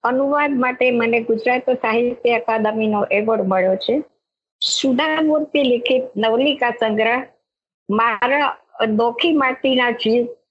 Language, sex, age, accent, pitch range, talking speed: English, male, 50-69, Indian, 225-260 Hz, 130 wpm